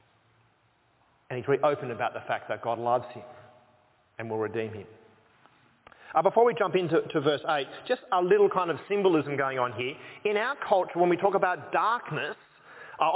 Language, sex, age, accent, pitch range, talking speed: English, male, 30-49, Australian, 130-200 Hz, 185 wpm